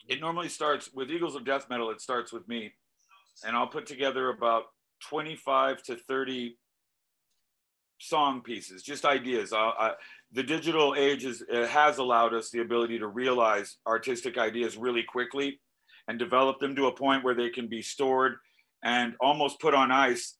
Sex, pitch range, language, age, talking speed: male, 120-145 Hz, English, 50-69, 160 wpm